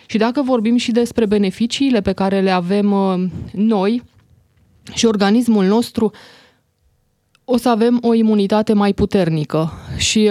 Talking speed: 130 wpm